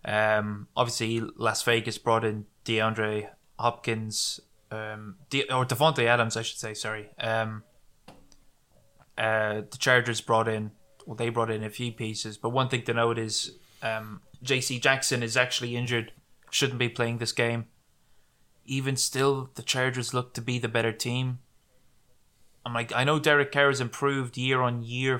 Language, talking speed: English, 160 wpm